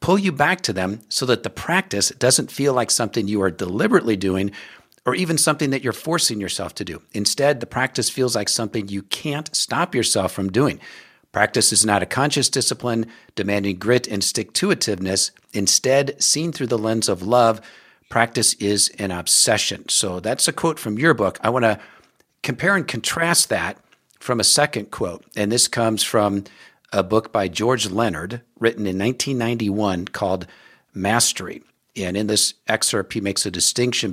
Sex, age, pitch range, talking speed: male, 50-69, 100-130 Hz, 175 wpm